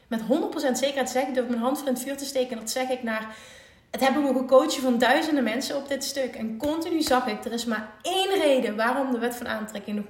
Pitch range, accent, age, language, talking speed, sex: 200-250 Hz, Dutch, 30-49, Dutch, 275 wpm, female